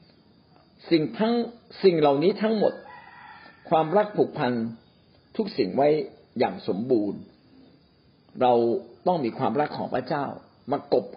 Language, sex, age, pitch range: Thai, male, 60-79, 130-175 Hz